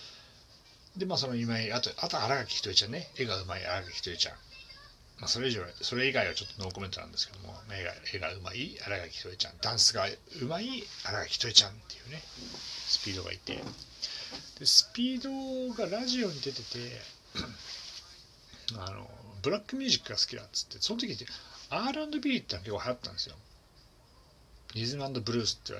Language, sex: Japanese, male